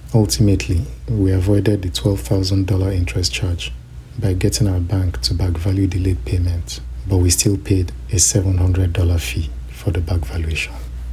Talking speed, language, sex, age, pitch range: 145 wpm, English, male, 50-69, 85-100 Hz